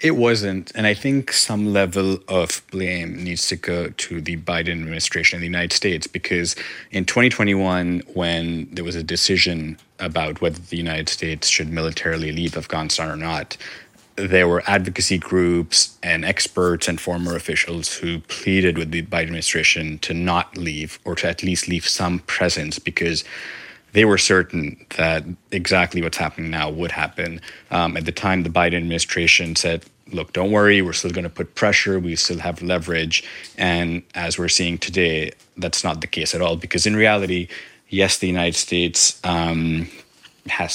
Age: 30-49